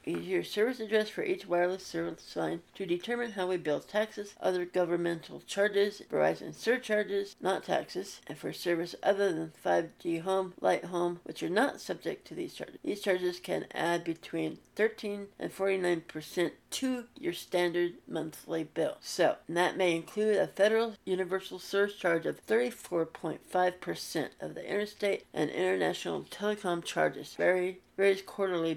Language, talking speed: English, 145 wpm